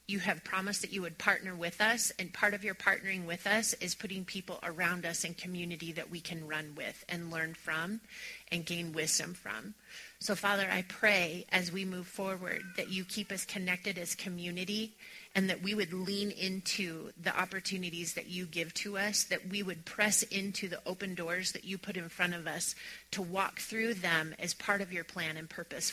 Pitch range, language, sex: 175-200 Hz, English, female